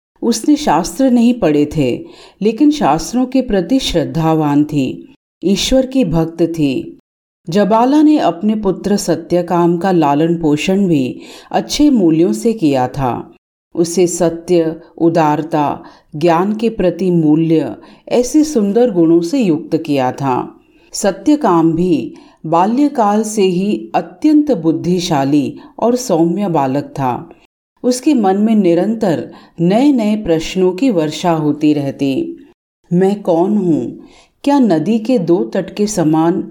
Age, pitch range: 50-69, 165-230 Hz